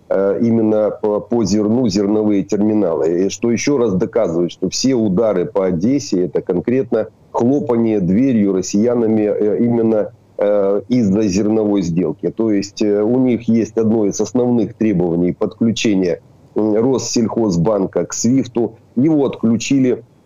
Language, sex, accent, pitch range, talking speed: Ukrainian, male, native, 100-115 Hz, 115 wpm